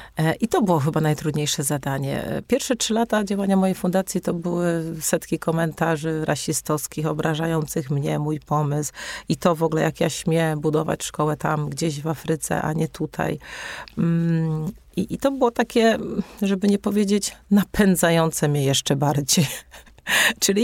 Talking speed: 145 wpm